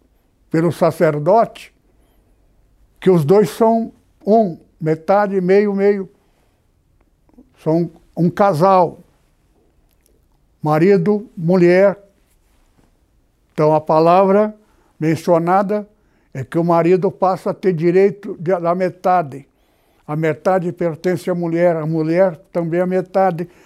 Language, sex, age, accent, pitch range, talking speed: Portuguese, male, 60-79, Brazilian, 155-200 Hz, 100 wpm